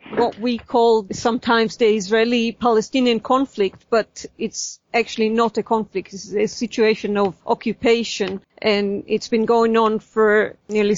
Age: 40-59